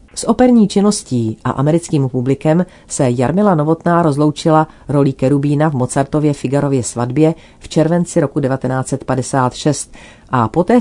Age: 40-59